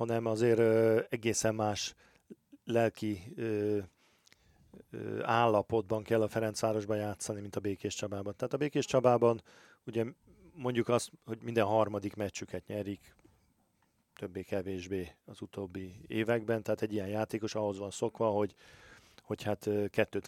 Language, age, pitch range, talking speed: Hungarian, 40-59, 100-115 Hz, 130 wpm